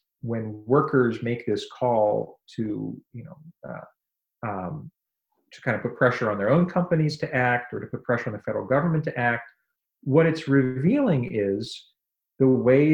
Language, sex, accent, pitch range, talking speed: English, male, American, 115-145 Hz, 170 wpm